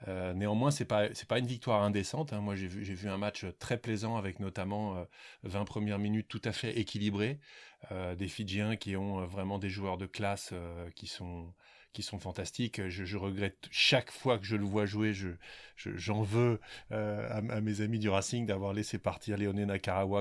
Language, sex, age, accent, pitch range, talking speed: French, male, 30-49, French, 95-110 Hz, 215 wpm